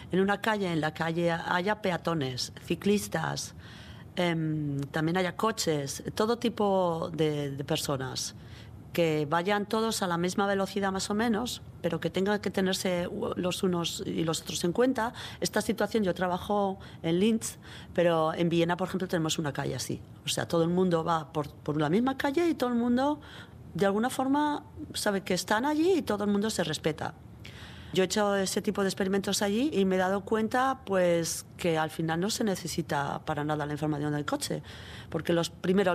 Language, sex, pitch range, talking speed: Spanish, female, 165-210 Hz, 185 wpm